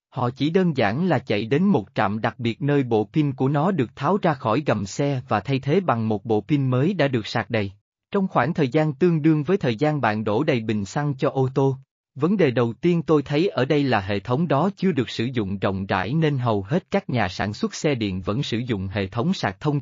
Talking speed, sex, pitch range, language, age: 255 wpm, male, 115-165 Hz, Vietnamese, 20-39